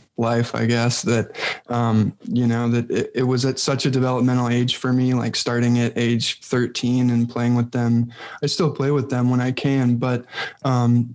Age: 20-39